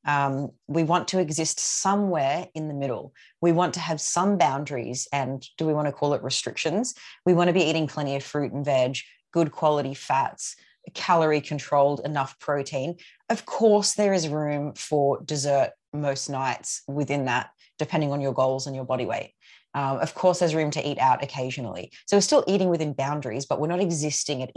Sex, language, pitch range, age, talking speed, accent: female, English, 140-175 Hz, 30-49, 195 wpm, Australian